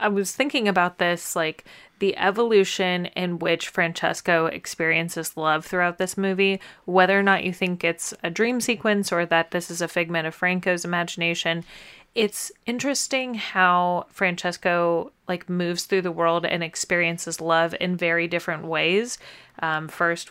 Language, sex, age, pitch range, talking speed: English, female, 30-49, 165-190 Hz, 155 wpm